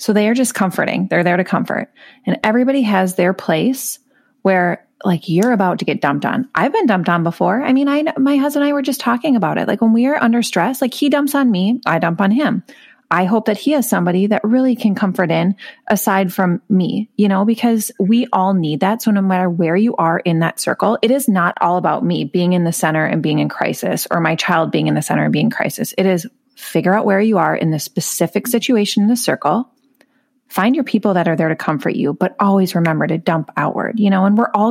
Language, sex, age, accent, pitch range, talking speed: English, female, 30-49, American, 180-240 Hz, 245 wpm